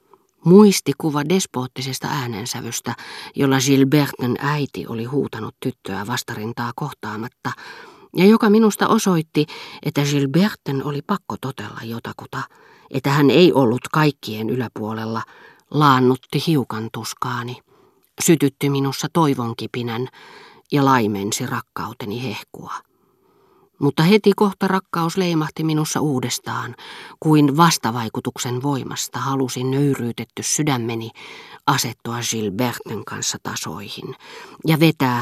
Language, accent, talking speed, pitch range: Finnish, native, 95 wpm, 120-155 Hz